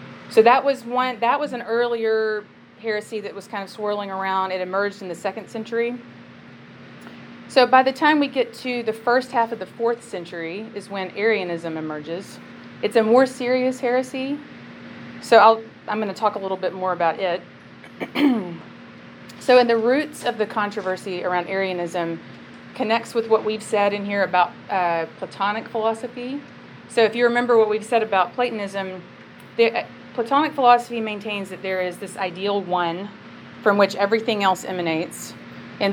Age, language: 30-49, English